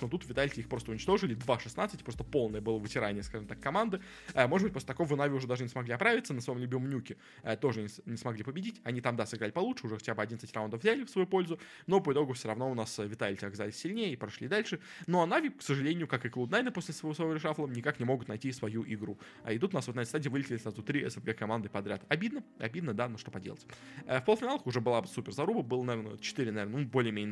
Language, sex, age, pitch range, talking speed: Russian, male, 20-39, 110-155 Hz, 255 wpm